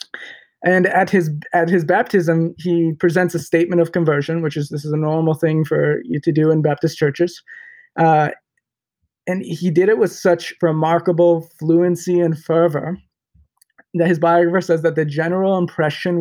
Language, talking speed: English, 165 wpm